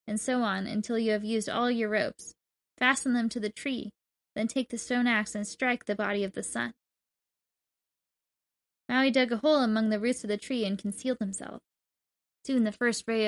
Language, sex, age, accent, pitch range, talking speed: English, female, 10-29, American, 215-250 Hz, 200 wpm